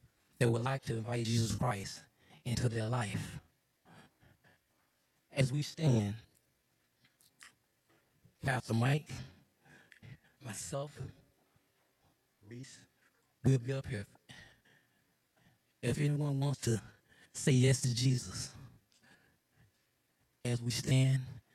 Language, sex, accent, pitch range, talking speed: English, male, American, 115-135 Hz, 90 wpm